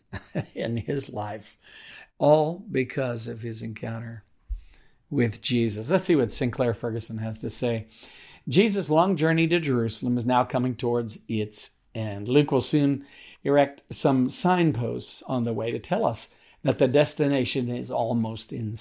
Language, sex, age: English, male, 50-69